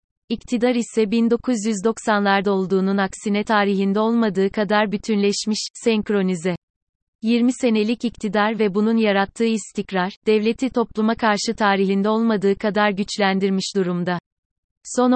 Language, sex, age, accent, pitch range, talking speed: Turkish, female, 30-49, native, 190-220 Hz, 105 wpm